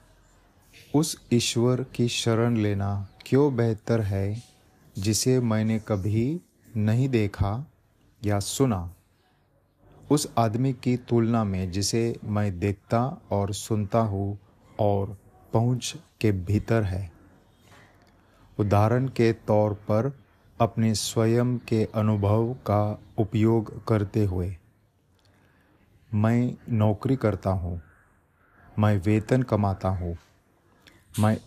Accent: native